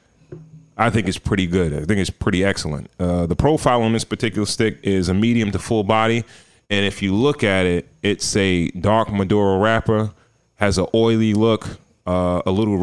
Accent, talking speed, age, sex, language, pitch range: American, 190 wpm, 30-49, male, English, 90-120 Hz